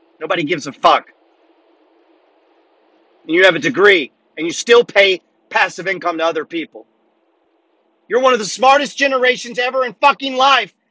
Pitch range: 230-285 Hz